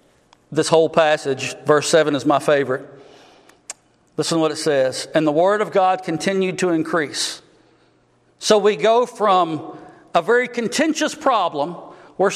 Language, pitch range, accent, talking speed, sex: English, 160-275 Hz, American, 145 wpm, male